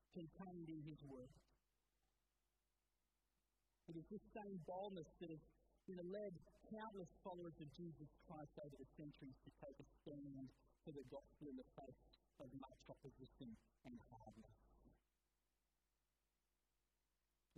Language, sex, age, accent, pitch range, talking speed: English, male, 50-69, American, 145-210 Hz, 125 wpm